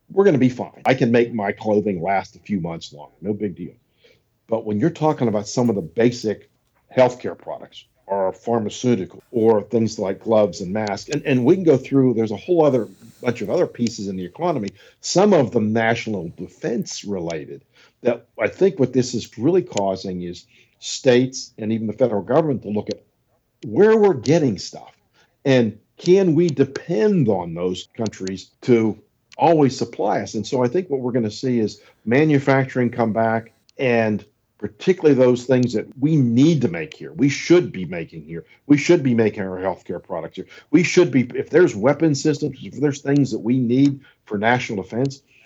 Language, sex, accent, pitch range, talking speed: English, male, American, 105-140 Hz, 190 wpm